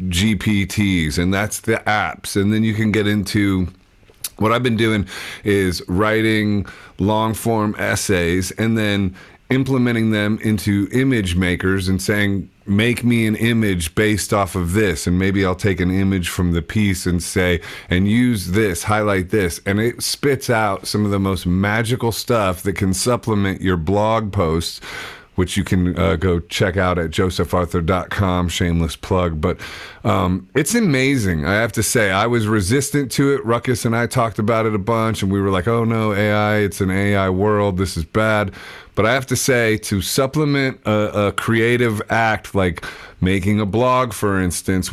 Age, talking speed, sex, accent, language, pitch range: 40-59, 175 wpm, male, American, English, 95-110 Hz